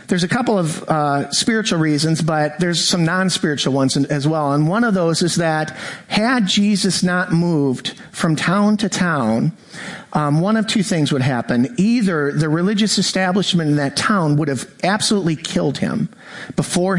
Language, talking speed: English, 170 wpm